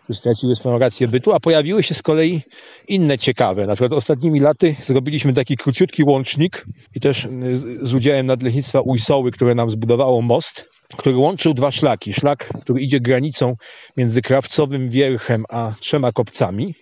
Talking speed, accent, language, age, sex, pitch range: 155 wpm, native, Polish, 40-59, male, 125-145 Hz